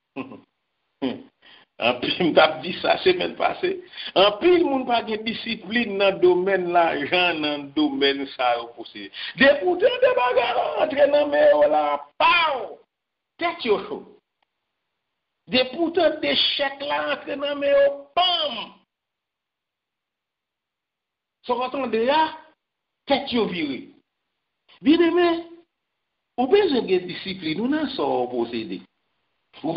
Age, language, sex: 50-69, English, male